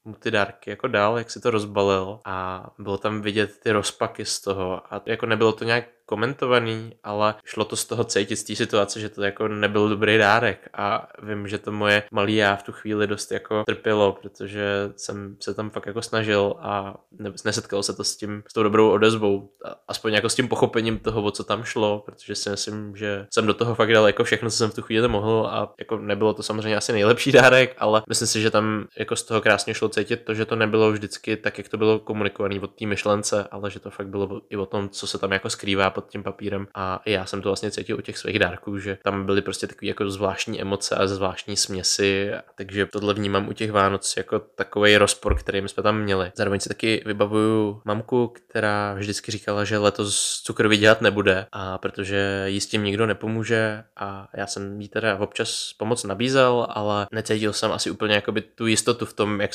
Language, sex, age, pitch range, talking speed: Czech, male, 20-39, 100-110 Hz, 215 wpm